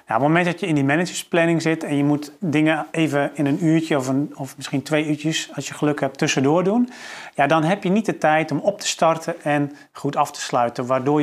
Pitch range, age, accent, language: 140-165 Hz, 40-59, Dutch, Dutch